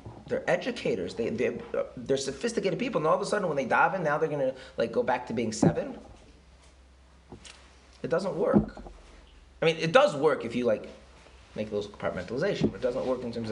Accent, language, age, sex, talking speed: American, English, 20-39, male, 200 wpm